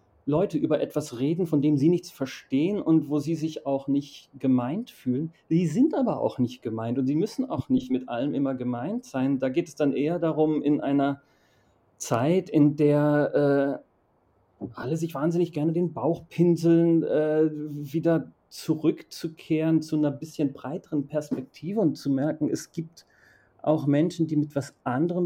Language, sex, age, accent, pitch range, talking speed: German, male, 40-59, German, 135-160 Hz, 170 wpm